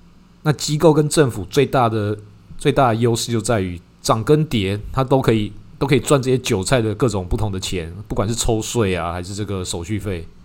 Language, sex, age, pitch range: Chinese, male, 20-39, 100-130 Hz